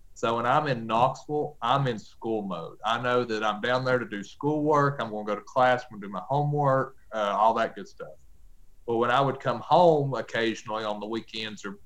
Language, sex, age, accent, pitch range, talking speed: English, male, 30-49, American, 100-125 Hz, 225 wpm